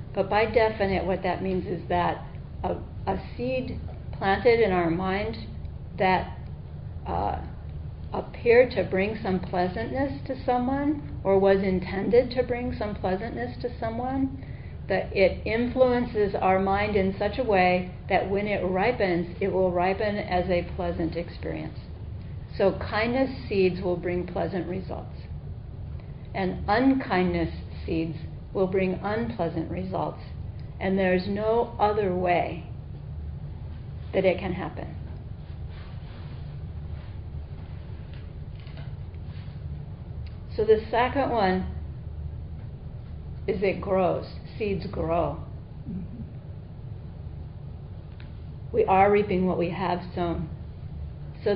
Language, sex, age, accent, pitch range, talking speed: English, female, 50-69, American, 170-215 Hz, 110 wpm